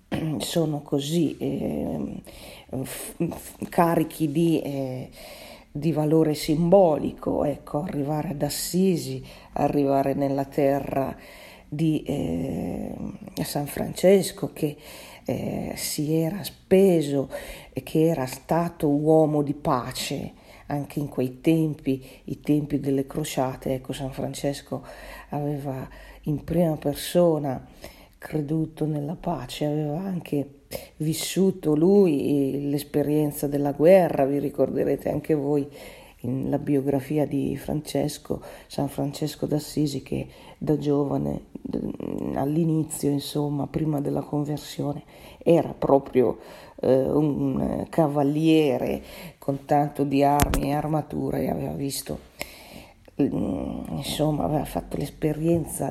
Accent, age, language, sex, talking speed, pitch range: native, 40-59, Italian, female, 100 wpm, 140-160 Hz